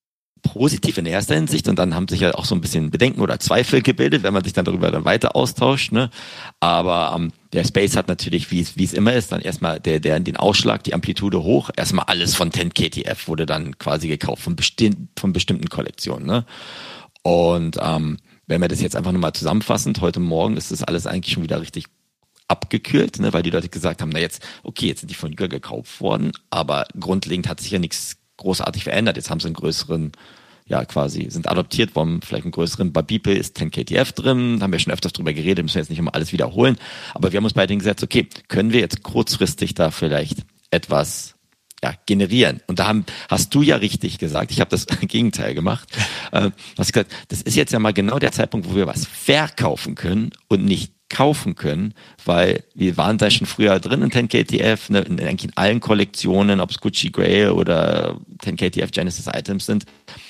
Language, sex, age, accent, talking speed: German, male, 40-59, German, 205 wpm